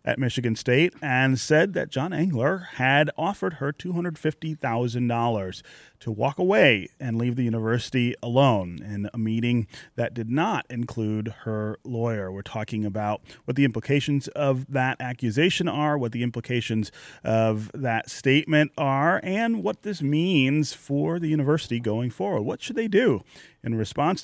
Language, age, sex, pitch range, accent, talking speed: English, 30-49, male, 110-140 Hz, American, 150 wpm